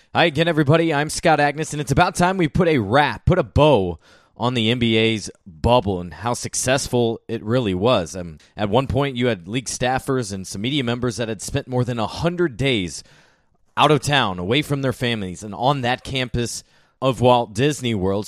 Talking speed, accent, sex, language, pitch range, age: 200 wpm, American, male, English, 110-145 Hz, 20-39